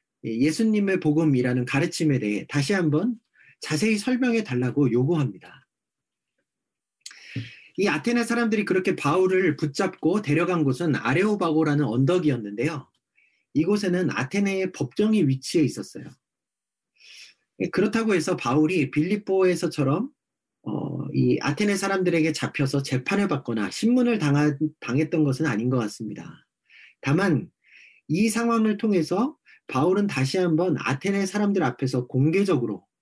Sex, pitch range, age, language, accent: male, 135-195 Hz, 40-59, Korean, native